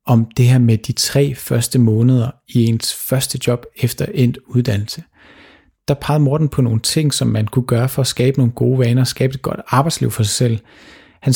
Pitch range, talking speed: 120-140 Hz, 210 wpm